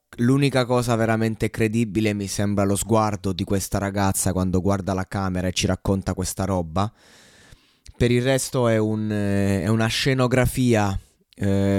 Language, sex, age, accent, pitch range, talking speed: Italian, male, 20-39, native, 100-115 Hz, 145 wpm